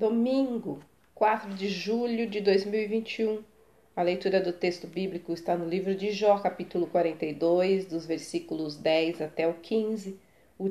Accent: Brazilian